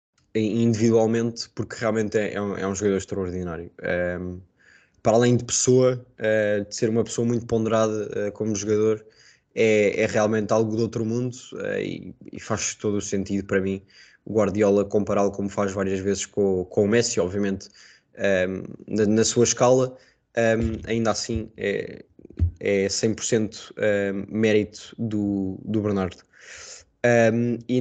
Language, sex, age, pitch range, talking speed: Portuguese, male, 20-39, 100-115 Hz, 135 wpm